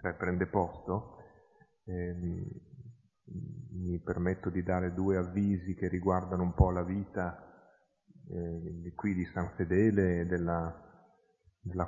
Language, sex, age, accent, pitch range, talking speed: Italian, male, 30-49, native, 85-95 Hz, 115 wpm